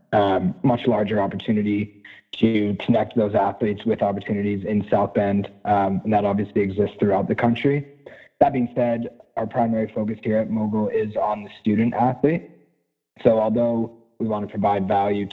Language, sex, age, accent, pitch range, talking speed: English, male, 30-49, American, 100-120 Hz, 165 wpm